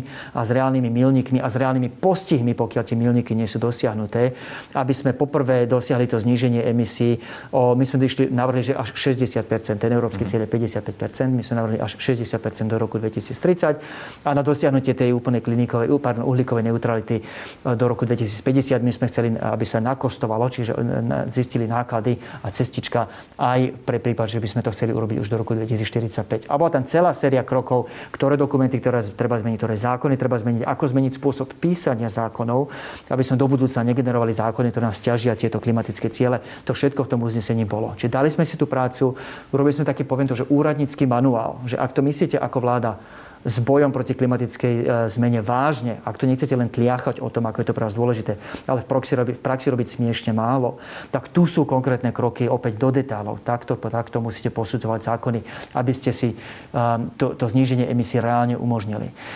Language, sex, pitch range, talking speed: Slovak, male, 115-135 Hz, 185 wpm